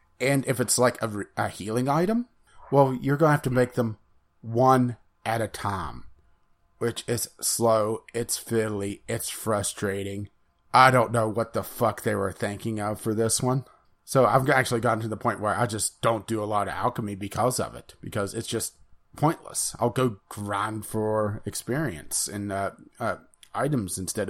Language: English